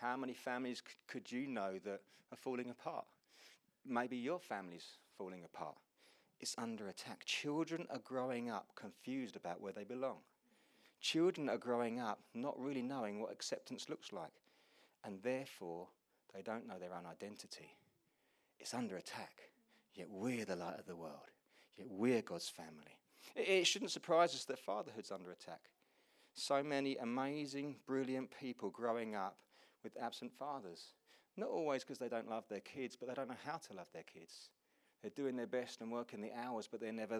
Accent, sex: British, male